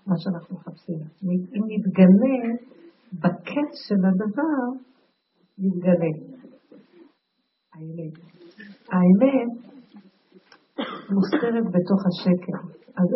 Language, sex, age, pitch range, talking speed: Hebrew, female, 50-69, 180-240 Hz, 70 wpm